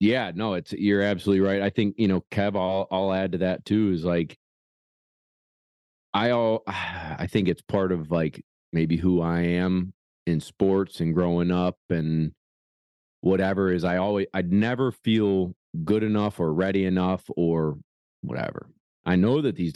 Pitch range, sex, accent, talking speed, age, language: 85-100 Hz, male, American, 165 wpm, 40-59, English